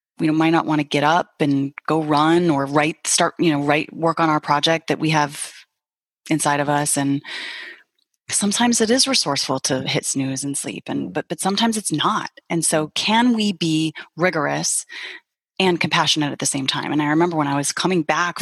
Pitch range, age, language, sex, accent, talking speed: 150-225 Hz, 30-49, English, female, American, 200 wpm